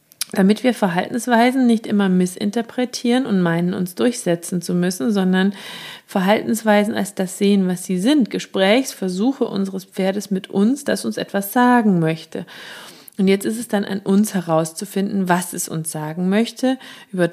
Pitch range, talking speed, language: 180-230 Hz, 150 wpm, German